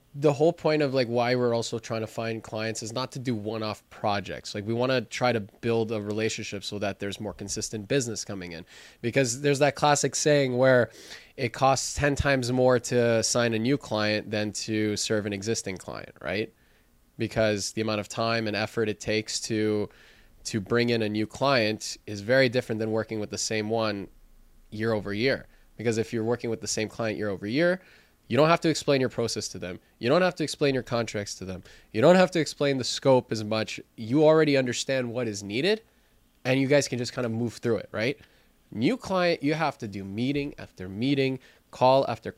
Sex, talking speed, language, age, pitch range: male, 215 wpm, English, 20-39, 105-130 Hz